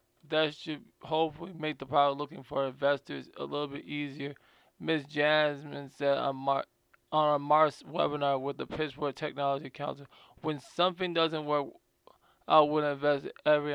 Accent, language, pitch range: American, English, 140-155 Hz